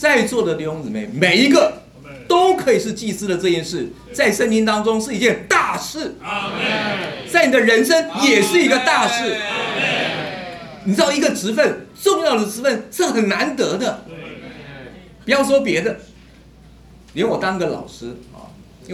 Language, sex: Chinese, male